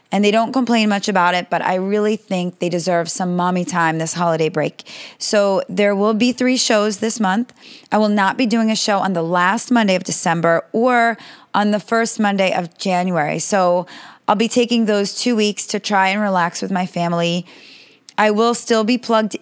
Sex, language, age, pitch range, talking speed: female, English, 20-39, 180-225 Hz, 205 wpm